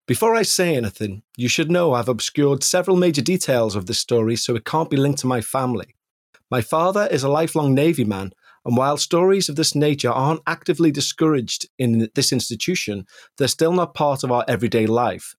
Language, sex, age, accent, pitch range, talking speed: English, male, 30-49, British, 115-155 Hz, 195 wpm